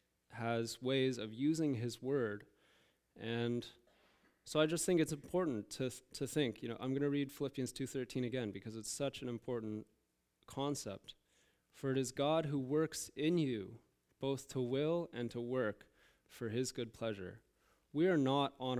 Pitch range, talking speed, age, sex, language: 110-140 Hz, 175 wpm, 20-39, male, English